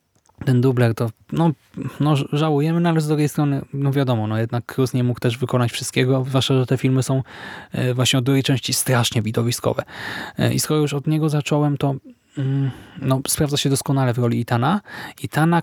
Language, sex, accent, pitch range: Polish, male, native, 120-140 Hz